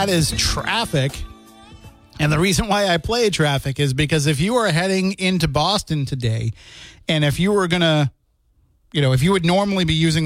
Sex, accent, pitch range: male, American, 135-175 Hz